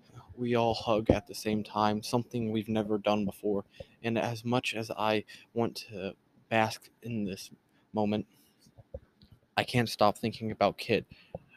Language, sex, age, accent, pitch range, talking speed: English, male, 20-39, American, 105-120 Hz, 150 wpm